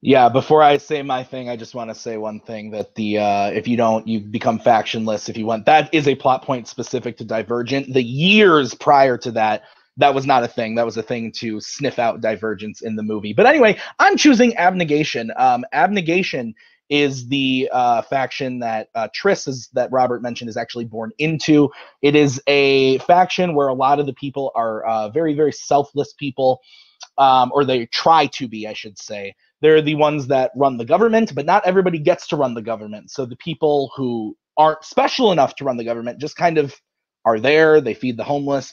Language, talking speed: English, 210 wpm